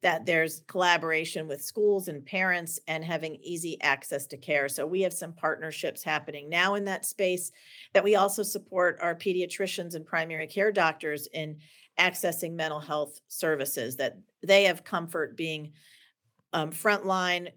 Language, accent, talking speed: English, American, 155 wpm